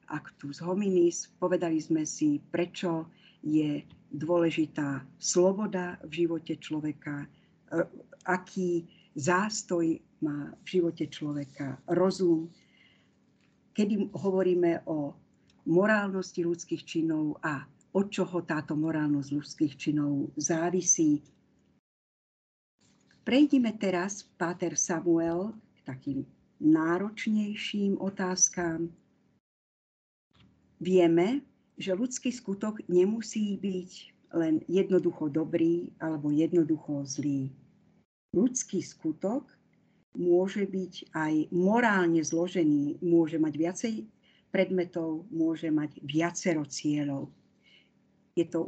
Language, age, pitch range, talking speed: Slovak, 50-69, 155-190 Hz, 85 wpm